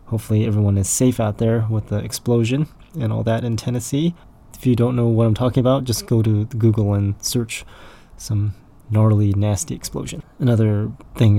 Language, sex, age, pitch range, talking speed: English, male, 20-39, 105-125 Hz, 180 wpm